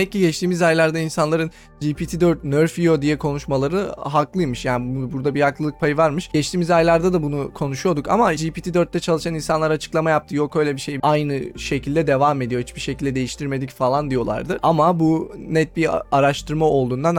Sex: male